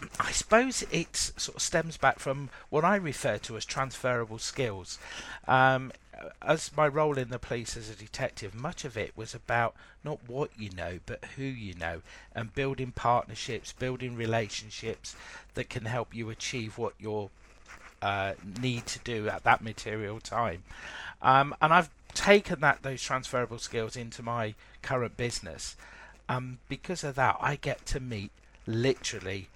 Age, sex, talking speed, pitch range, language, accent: 50-69, male, 160 wpm, 105-125 Hz, English, British